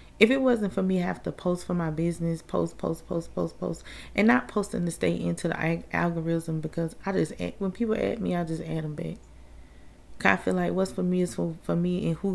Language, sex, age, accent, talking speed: English, female, 30-49, American, 250 wpm